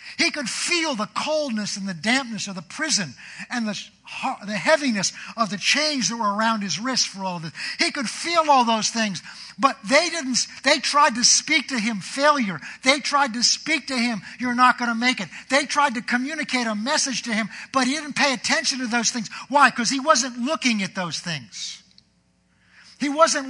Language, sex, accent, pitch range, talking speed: English, male, American, 220-285 Hz, 205 wpm